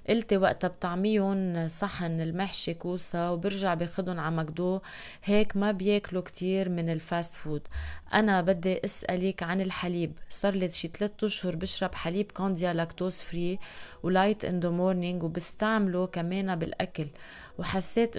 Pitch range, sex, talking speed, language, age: 175-195 Hz, female, 120 wpm, Arabic, 20-39